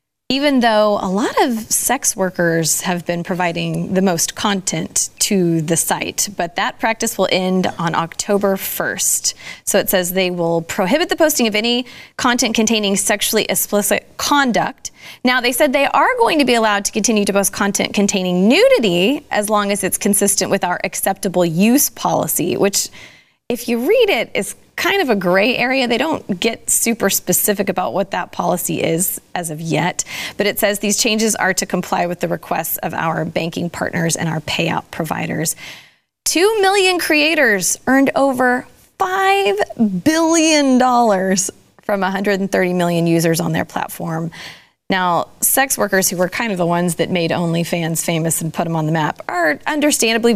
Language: English